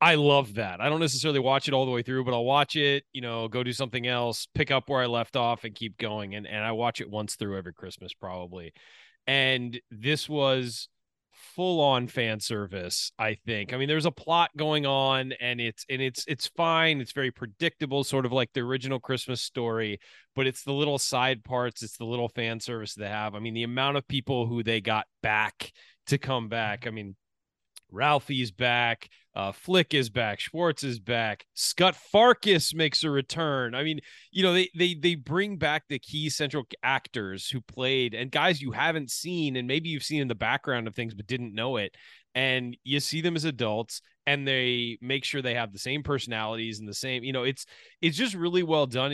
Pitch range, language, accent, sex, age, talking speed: 115-140 Hz, English, American, male, 30-49, 210 wpm